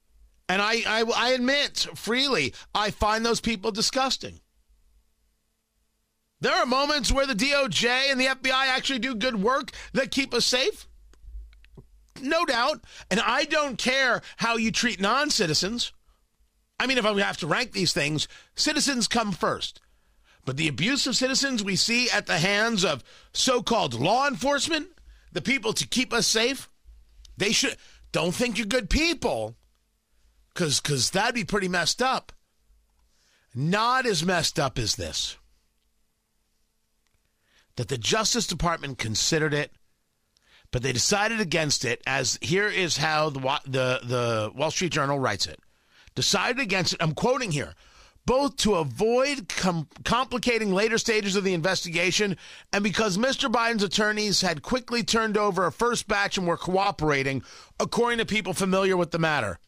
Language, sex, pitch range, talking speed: English, male, 145-240 Hz, 150 wpm